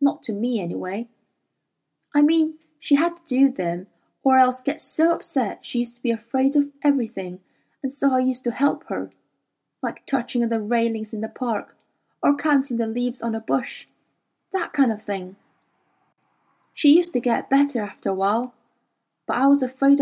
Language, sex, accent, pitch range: Chinese, female, British, 215-275 Hz